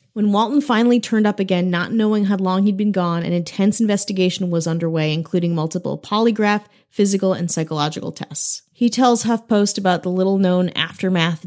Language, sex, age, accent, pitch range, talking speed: English, female, 30-49, American, 170-210 Hz, 165 wpm